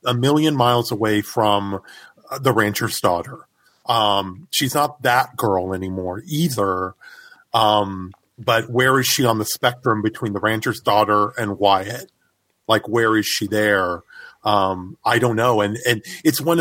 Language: English